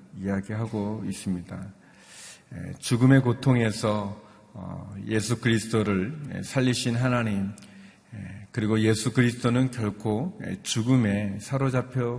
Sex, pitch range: male, 100-125 Hz